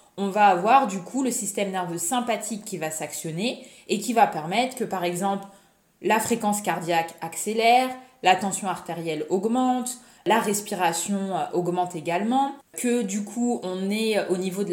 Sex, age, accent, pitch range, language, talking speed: female, 20-39, French, 175-225 Hz, French, 160 wpm